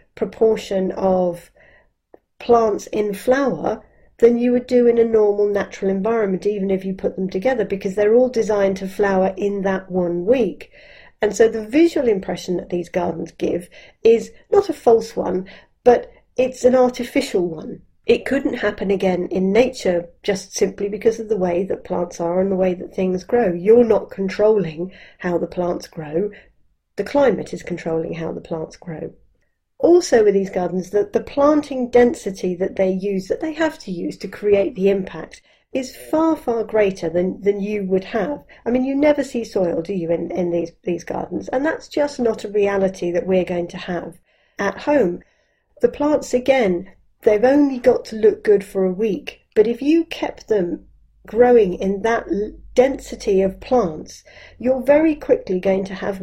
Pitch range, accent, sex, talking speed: 185-245 Hz, British, female, 180 wpm